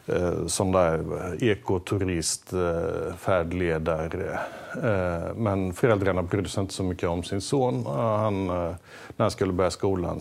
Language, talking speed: Swedish, 145 wpm